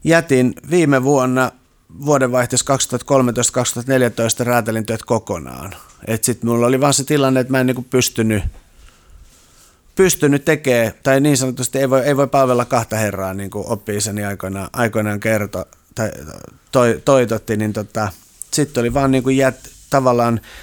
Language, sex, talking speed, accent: Finnish, male, 125 wpm, native